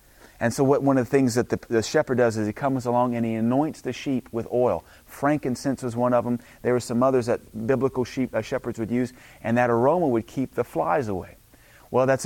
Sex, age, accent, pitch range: male, 30-49, American, 110-130 Hz